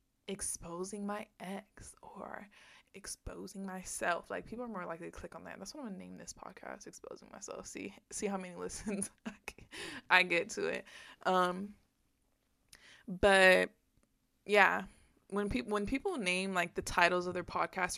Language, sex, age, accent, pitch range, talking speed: English, female, 20-39, American, 170-200 Hz, 155 wpm